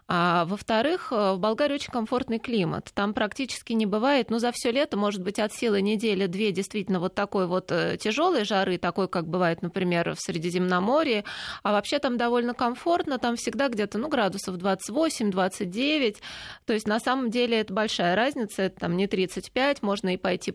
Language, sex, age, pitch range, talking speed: Russian, female, 20-39, 185-235 Hz, 170 wpm